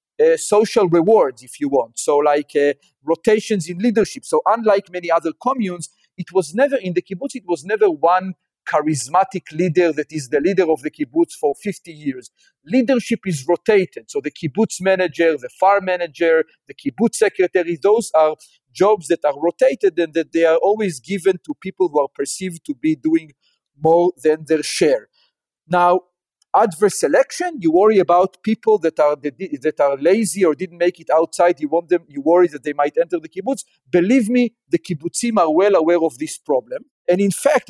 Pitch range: 160-230 Hz